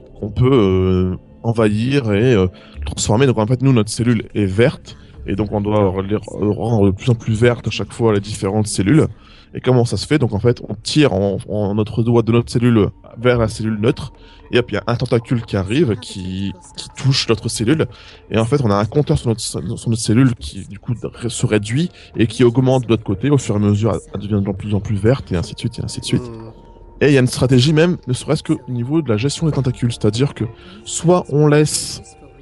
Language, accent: French, French